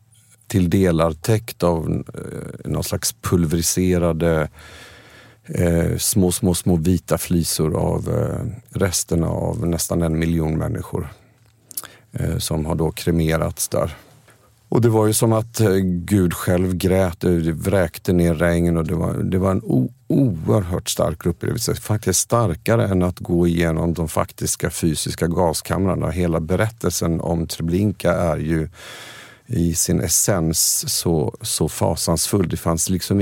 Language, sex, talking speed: English, male, 125 wpm